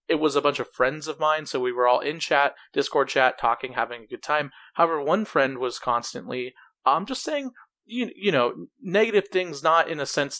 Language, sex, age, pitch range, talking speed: English, male, 30-49, 125-170 Hz, 215 wpm